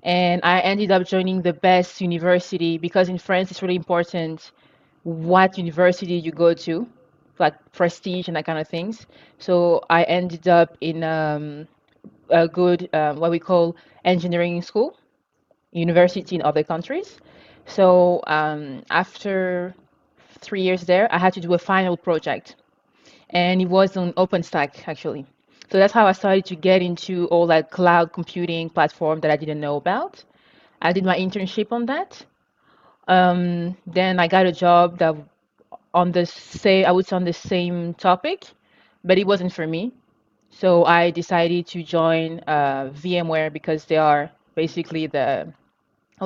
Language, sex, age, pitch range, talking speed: English, female, 20-39, 160-185 Hz, 160 wpm